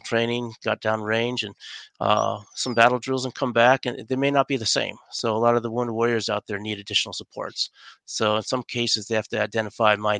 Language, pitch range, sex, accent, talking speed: English, 105-120 Hz, male, American, 235 wpm